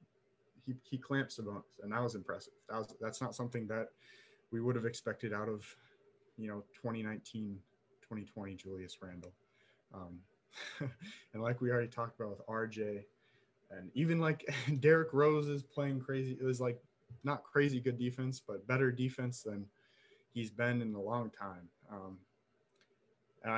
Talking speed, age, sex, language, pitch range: 160 wpm, 20-39, male, English, 105-125 Hz